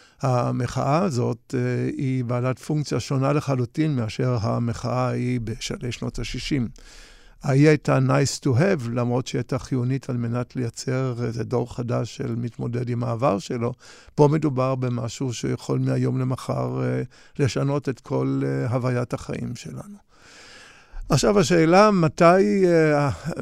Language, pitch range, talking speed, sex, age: Hebrew, 125-145 Hz, 125 wpm, male, 50-69